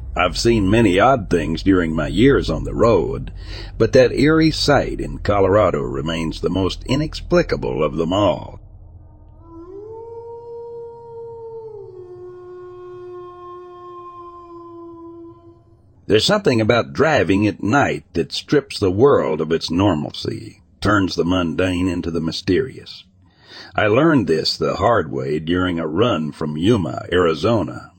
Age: 60-79